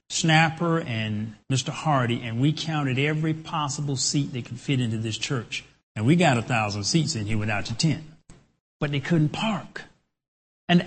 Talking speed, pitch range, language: 175 wpm, 125-175 Hz, English